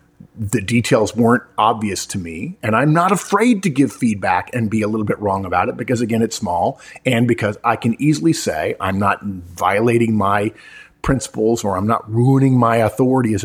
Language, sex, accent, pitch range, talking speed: English, male, American, 105-140 Hz, 190 wpm